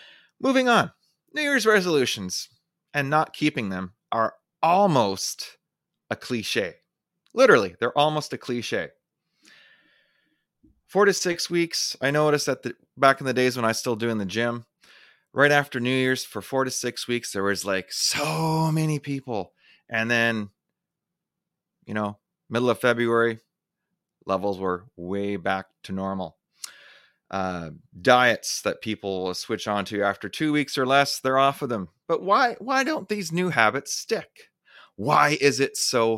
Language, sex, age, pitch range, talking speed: English, male, 30-49, 100-150 Hz, 155 wpm